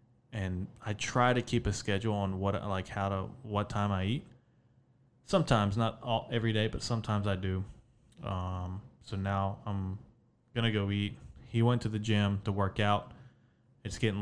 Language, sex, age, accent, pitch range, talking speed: English, male, 20-39, American, 100-115 Hz, 175 wpm